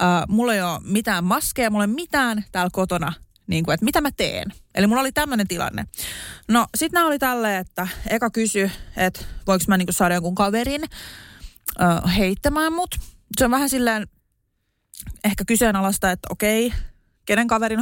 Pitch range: 185-250 Hz